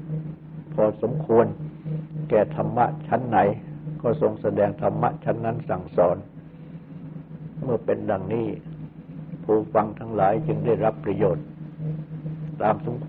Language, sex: Thai, male